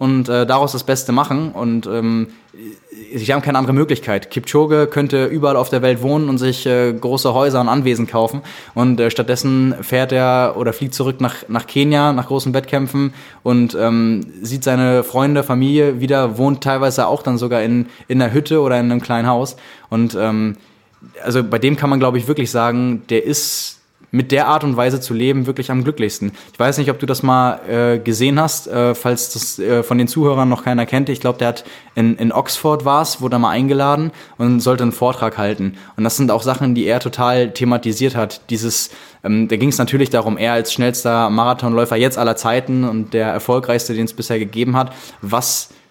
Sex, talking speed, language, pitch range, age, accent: male, 205 wpm, German, 115-135 Hz, 20-39, German